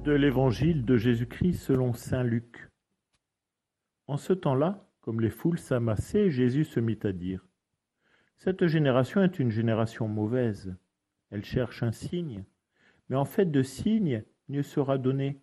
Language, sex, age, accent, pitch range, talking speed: French, male, 50-69, French, 110-150 Hz, 145 wpm